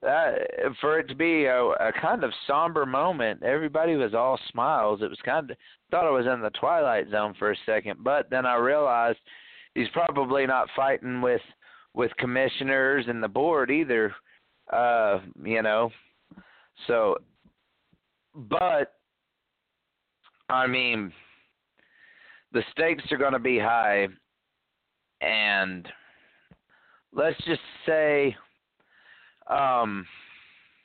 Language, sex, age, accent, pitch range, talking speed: English, male, 30-49, American, 115-150 Hz, 125 wpm